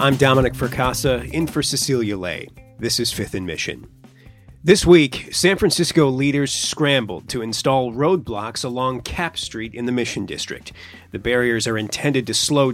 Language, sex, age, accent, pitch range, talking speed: English, male, 30-49, American, 120-155 Hz, 160 wpm